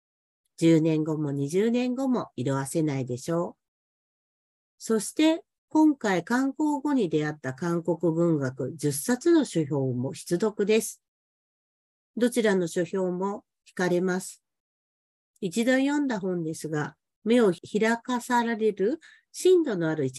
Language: Japanese